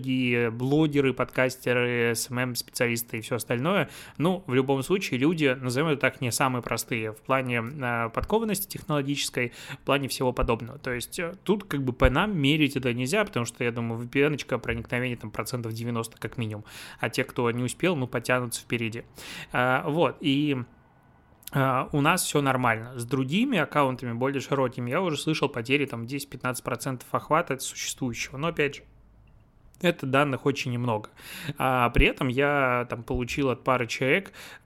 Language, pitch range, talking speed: Russian, 120-145 Hz, 160 wpm